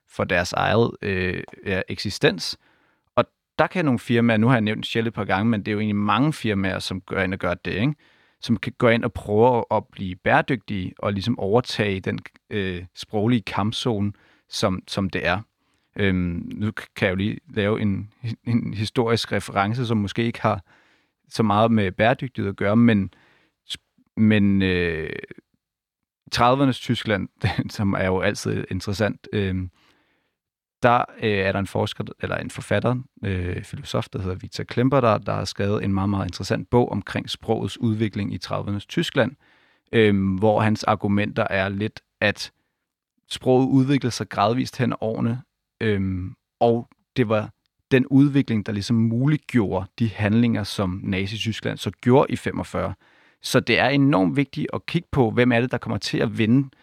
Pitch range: 100-120 Hz